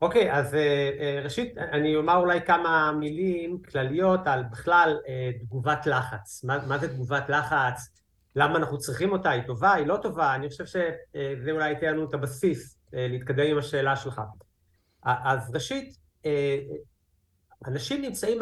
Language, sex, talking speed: Hebrew, male, 165 wpm